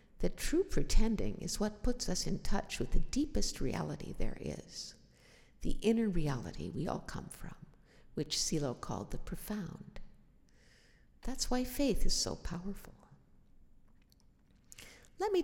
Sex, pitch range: female, 160-220 Hz